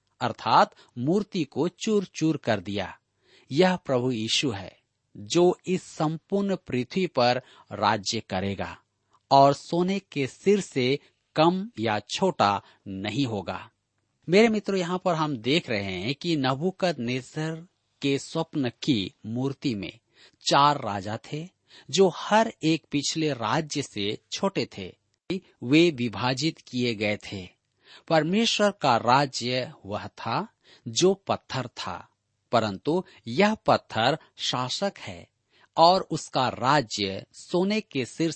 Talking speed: 120 wpm